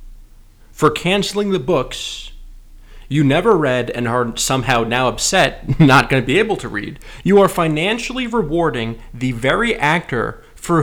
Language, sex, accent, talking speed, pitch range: English, male, American, 150 wpm, 120-180 Hz